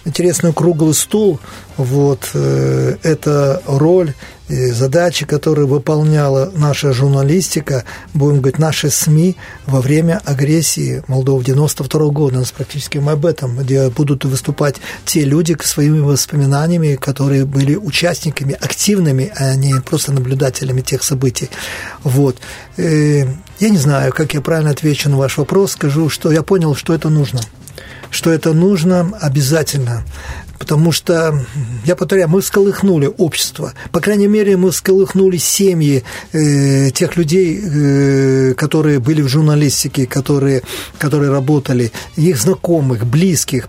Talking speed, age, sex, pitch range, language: 130 wpm, 40-59, male, 135-170 Hz, Russian